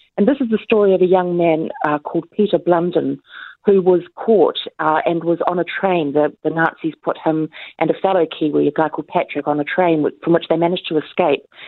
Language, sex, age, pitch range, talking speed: English, female, 40-59, 155-185 Hz, 230 wpm